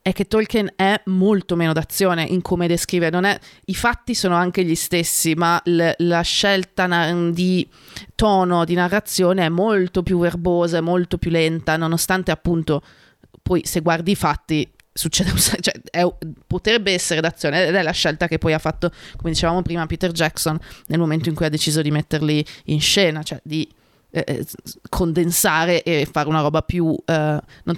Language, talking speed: Italian, 175 wpm